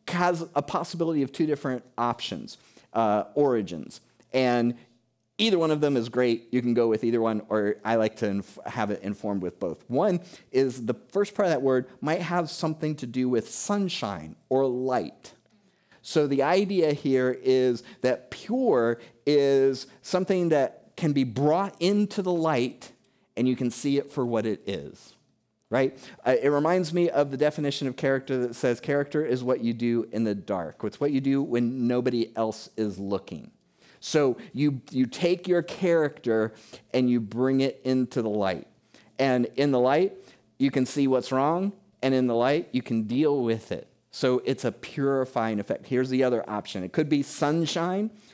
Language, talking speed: English, 180 wpm